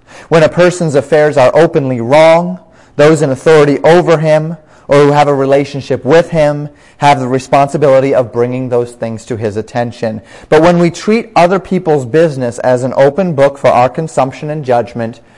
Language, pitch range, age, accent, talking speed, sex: English, 125-155 Hz, 30-49, American, 175 wpm, male